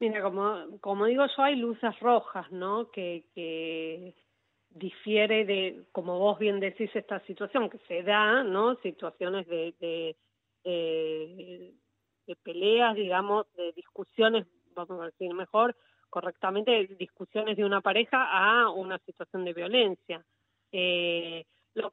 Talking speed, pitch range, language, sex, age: 130 wpm, 180-220 Hz, Spanish, female, 40-59